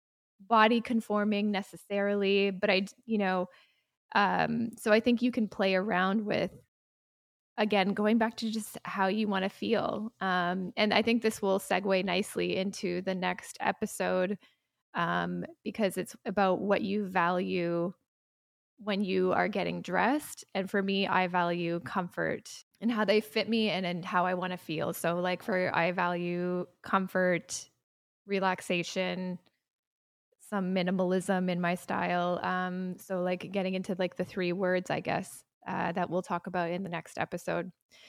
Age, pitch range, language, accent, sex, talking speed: 20-39, 180-205 Hz, English, American, female, 155 wpm